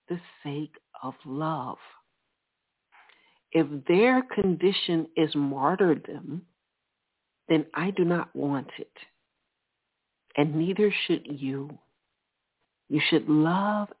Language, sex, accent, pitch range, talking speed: English, female, American, 150-190 Hz, 90 wpm